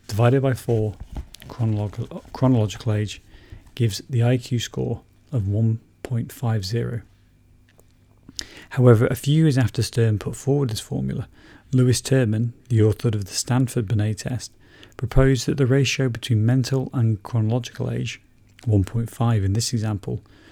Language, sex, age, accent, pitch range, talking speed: English, male, 30-49, British, 100-120 Hz, 125 wpm